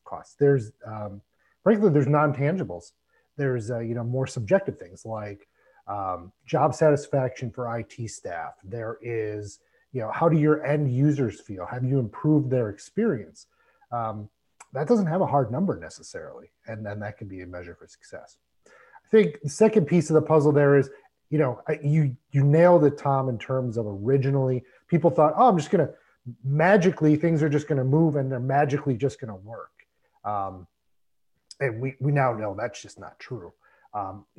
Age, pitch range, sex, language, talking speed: 30-49, 120-160 Hz, male, English, 180 wpm